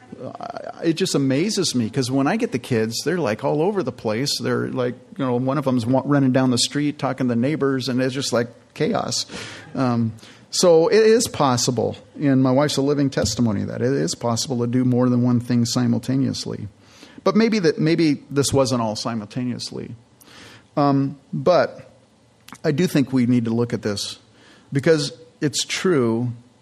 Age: 40-59